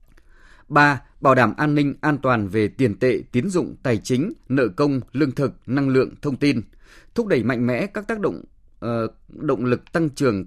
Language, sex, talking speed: Vietnamese, male, 195 wpm